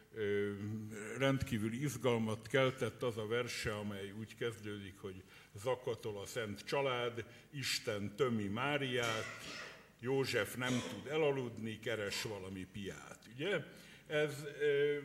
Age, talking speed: 60-79, 105 wpm